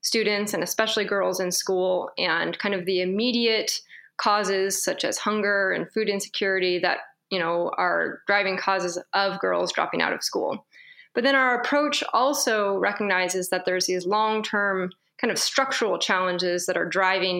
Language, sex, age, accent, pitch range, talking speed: English, female, 20-39, American, 185-220 Hz, 160 wpm